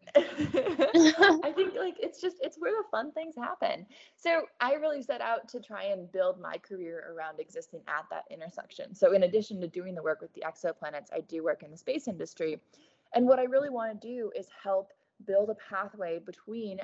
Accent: American